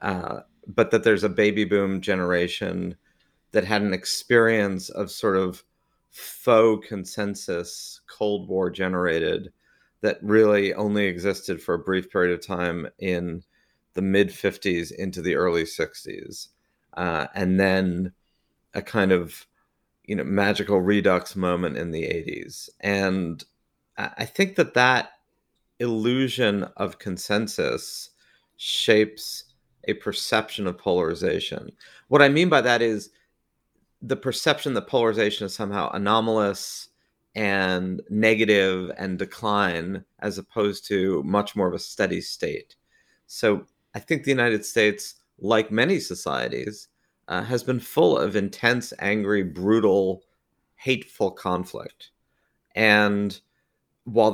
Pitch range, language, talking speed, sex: 95-110 Hz, English, 125 wpm, male